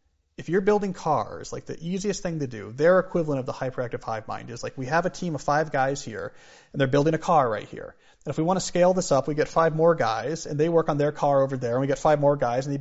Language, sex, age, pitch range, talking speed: Hindi, male, 30-49, 125-160 Hz, 295 wpm